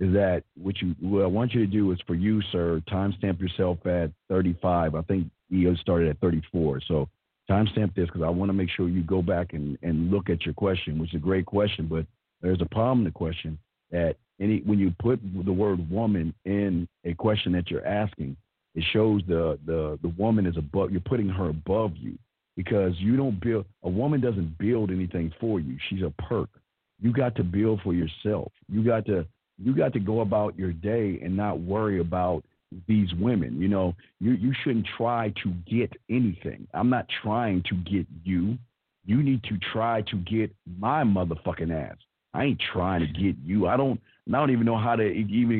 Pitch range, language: 85-110 Hz, English